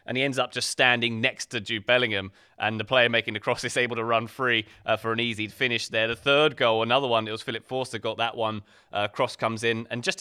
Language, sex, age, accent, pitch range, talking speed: English, male, 20-39, British, 110-135 Hz, 265 wpm